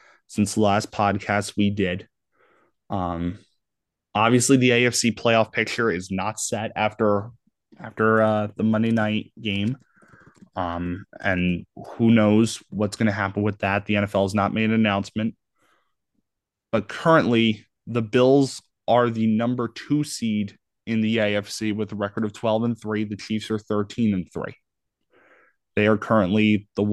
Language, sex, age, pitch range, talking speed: English, male, 20-39, 100-115 Hz, 150 wpm